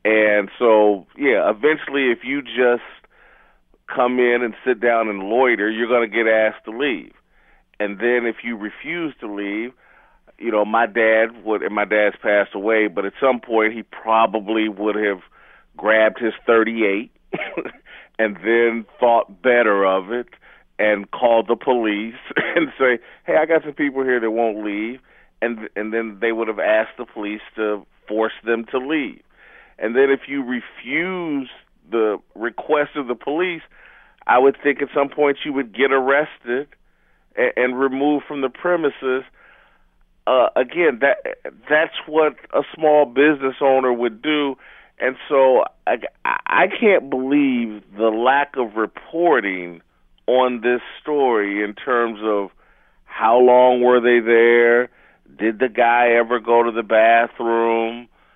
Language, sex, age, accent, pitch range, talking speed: English, male, 40-59, American, 110-135 Hz, 155 wpm